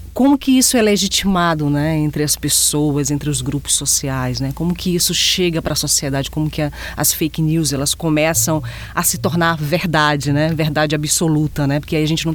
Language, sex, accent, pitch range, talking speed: Portuguese, female, Brazilian, 145-175 Hz, 205 wpm